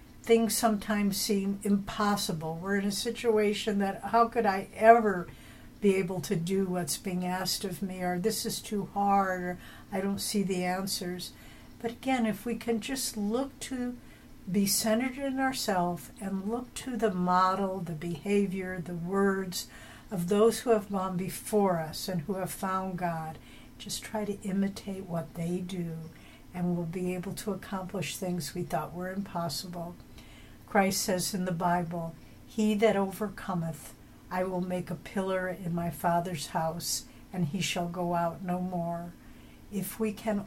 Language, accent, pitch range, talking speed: English, American, 175-200 Hz, 165 wpm